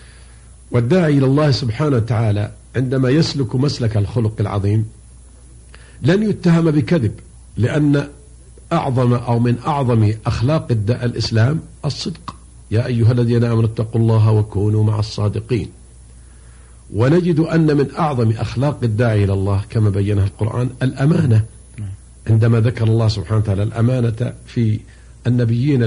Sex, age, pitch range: male, 50-69, 100-130 Hz